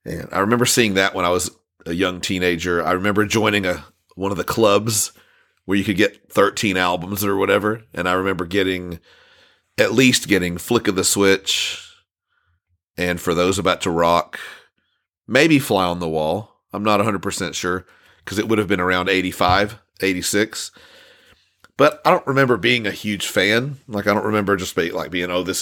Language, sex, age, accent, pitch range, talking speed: English, male, 40-59, American, 90-110 Hz, 185 wpm